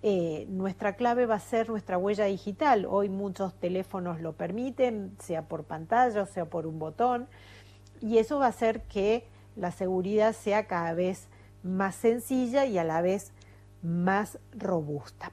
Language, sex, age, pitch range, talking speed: Spanish, female, 40-59, 170-215 Hz, 160 wpm